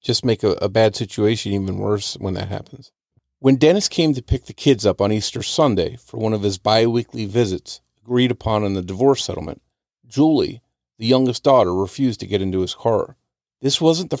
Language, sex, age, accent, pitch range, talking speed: English, male, 40-59, American, 100-130 Hz, 200 wpm